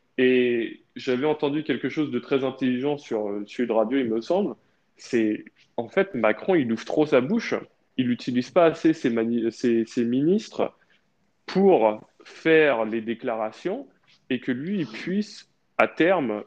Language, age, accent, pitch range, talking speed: French, 20-39, French, 110-135 Hz, 165 wpm